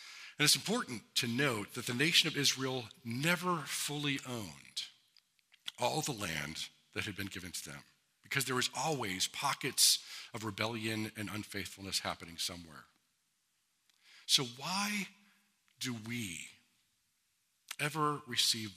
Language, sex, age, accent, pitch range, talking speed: English, male, 50-69, American, 110-150 Hz, 125 wpm